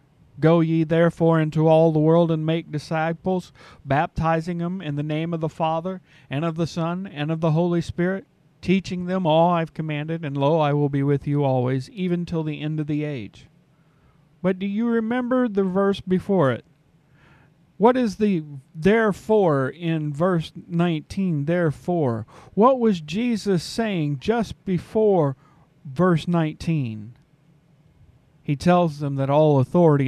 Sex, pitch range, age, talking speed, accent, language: male, 140-175 Hz, 40-59, 155 wpm, American, English